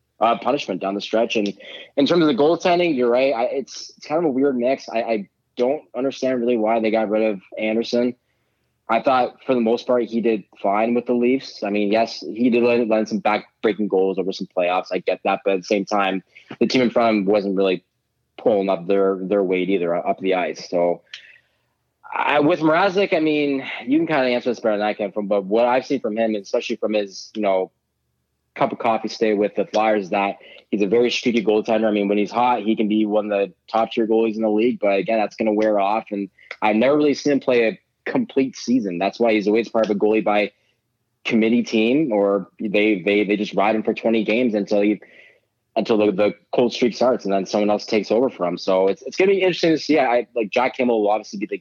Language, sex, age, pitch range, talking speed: English, male, 20-39, 100-120 Hz, 245 wpm